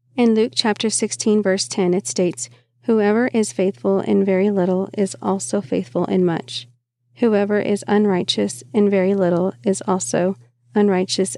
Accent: American